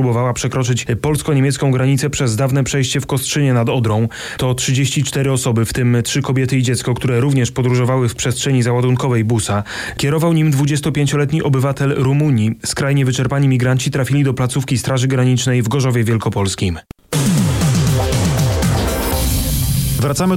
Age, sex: 30-49, male